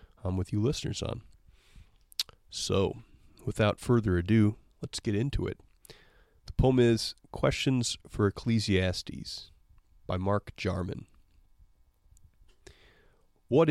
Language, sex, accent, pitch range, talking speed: English, male, American, 90-105 Hz, 95 wpm